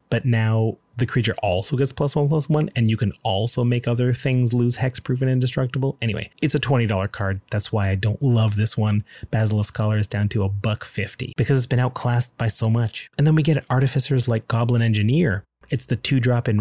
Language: English